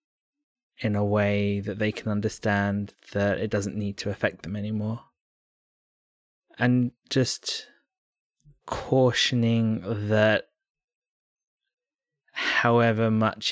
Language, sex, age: English, male, 20-39